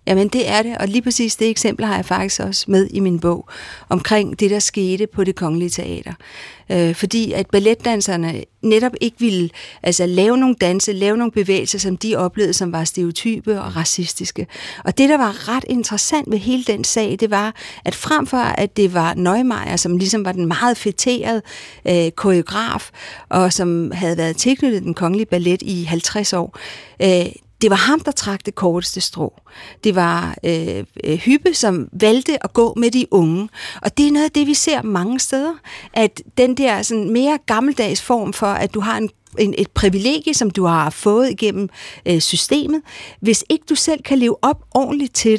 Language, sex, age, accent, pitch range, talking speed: Danish, female, 50-69, native, 180-240 Hz, 190 wpm